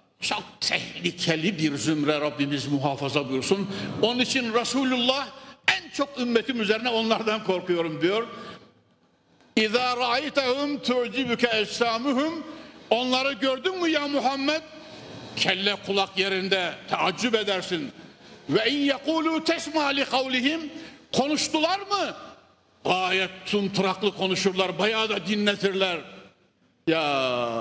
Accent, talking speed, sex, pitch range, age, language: native, 95 wpm, male, 195-285 Hz, 60-79, Turkish